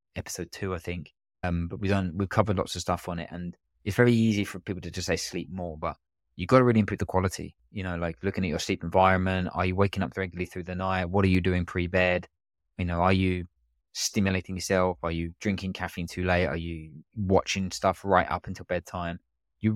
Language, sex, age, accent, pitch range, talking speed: English, male, 20-39, British, 85-95 Hz, 235 wpm